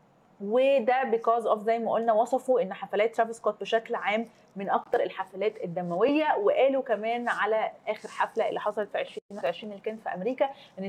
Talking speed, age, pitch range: 170 wpm, 20-39, 205-250 Hz